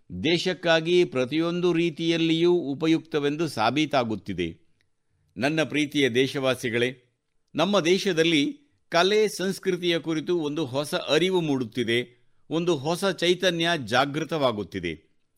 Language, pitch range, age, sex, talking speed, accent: Kannada, 140-180 Hz, 60-79, male, 80 wpm, native